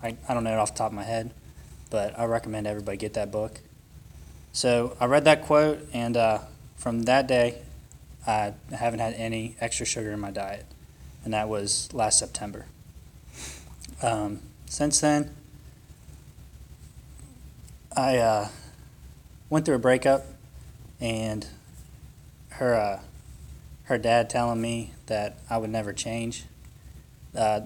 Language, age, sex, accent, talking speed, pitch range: English, 20-39, male, American, 135 wpm, 100-125 Hz